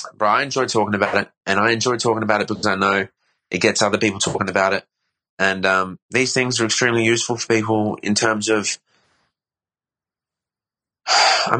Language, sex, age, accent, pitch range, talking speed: English, male, 20-39, Australian, 95-115 Hz, 180 wpm